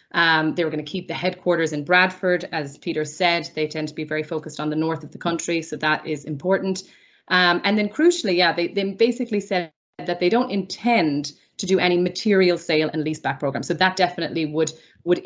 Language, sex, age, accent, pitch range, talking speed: English, female, 30-49, Irish, 155-190 Hz, 215 wpm